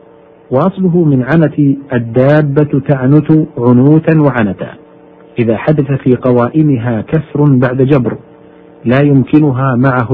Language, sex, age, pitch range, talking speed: Arabic, male, 50-69, 125-150 Hz, 100 wpm